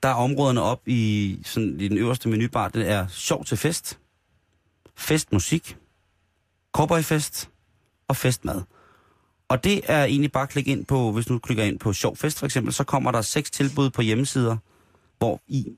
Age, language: 30-49, Danish